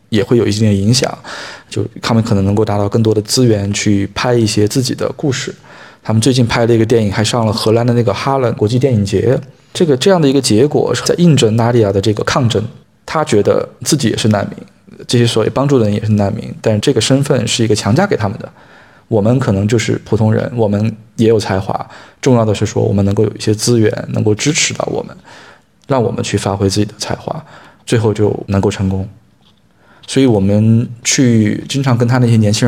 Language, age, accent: Chinese, 20-39, native